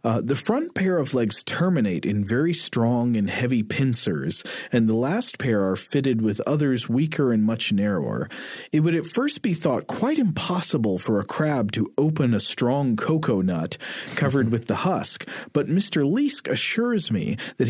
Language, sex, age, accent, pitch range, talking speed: English, male, 40-59, American, 115-165 Hz, 175 wpm